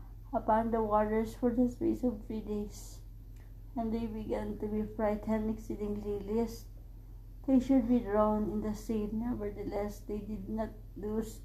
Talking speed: 150 wpm